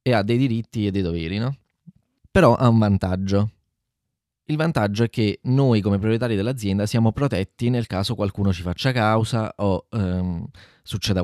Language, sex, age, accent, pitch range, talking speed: Italian, male, 20-39, native, 90-110 Hz, 165 wpm